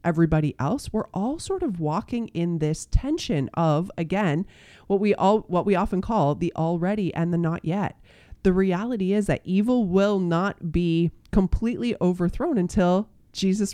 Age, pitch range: 30-49, 155-210 Hz